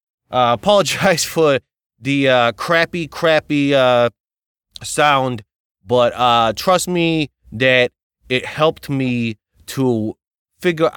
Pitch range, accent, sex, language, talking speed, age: 120-150 Hz, American, male, English, 105 wpm, 30-49